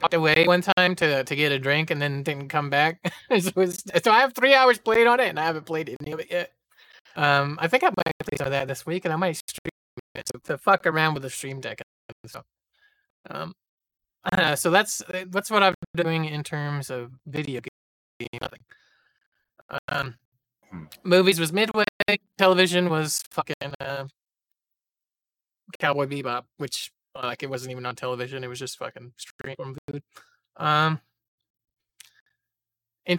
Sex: male